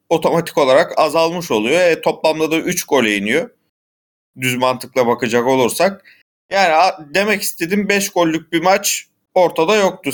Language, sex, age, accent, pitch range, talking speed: Turkish, male, 40-59, native, 115-150 Hz, 135 wpm